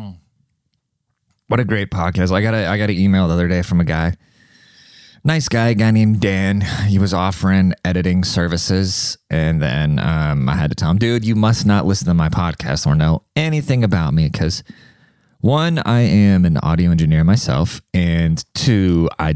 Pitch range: 85-110 Hz